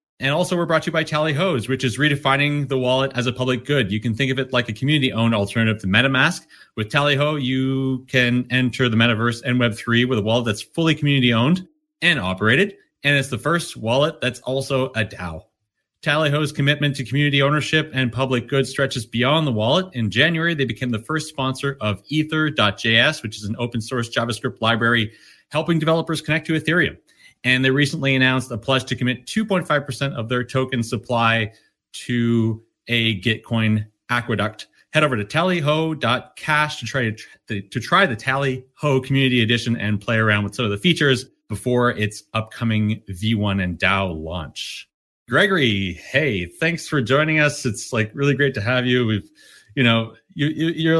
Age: 30-49